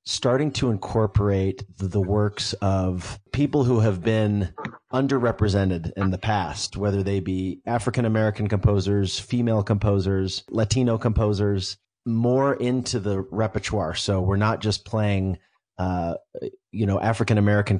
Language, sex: English, male